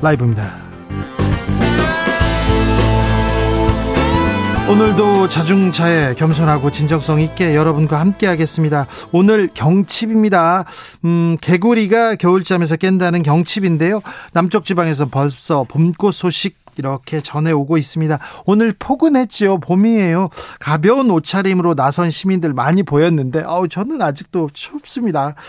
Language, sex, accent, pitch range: Korean, male, native, 145-195 Hz